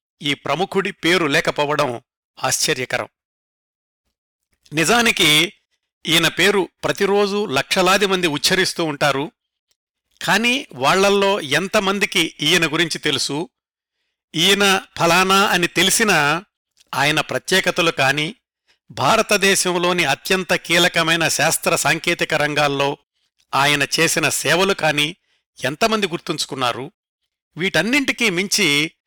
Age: 50-69